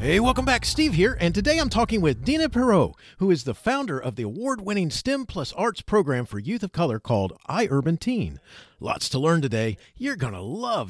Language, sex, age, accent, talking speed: English, male, 40-59, American, 210 wpm